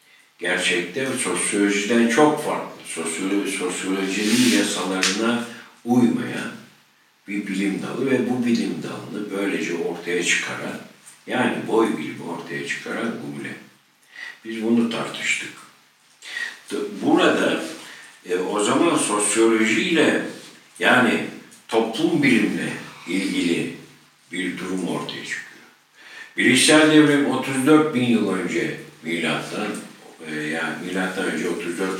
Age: 60-79